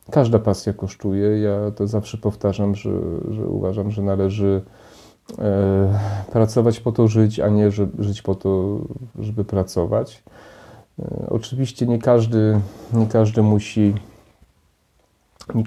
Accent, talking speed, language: native, 120 wpm, Polish